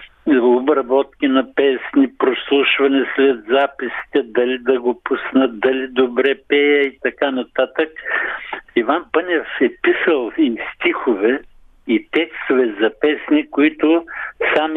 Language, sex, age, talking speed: Bulgarian, male, 60-79, 120 wpm